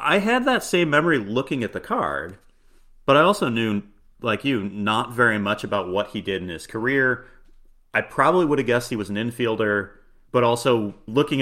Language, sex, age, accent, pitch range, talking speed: English, male, 30-49, American, 105-130 Hz, 195 wpm